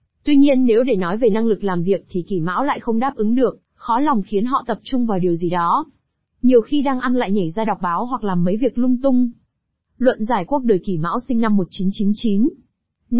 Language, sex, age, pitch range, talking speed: Vietnamese, female, 20-39, 195-250 Hz, 235 wpm